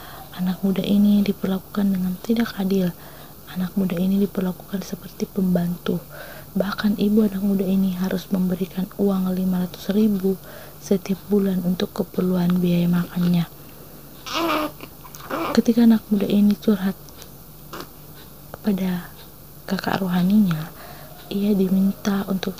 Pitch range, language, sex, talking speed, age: 180-205 Hz, Indonesian, female, 105 wpm, 20-39